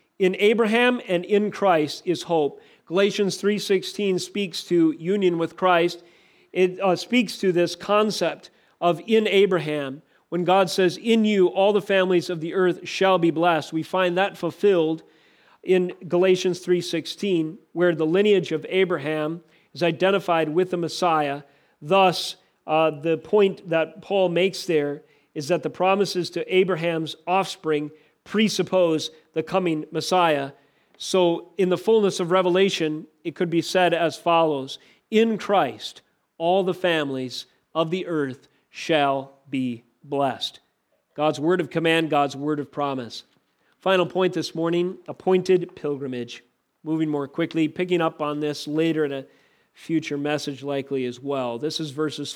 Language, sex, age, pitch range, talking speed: English, male, 40-59, 155-185 Hz, 145 wpm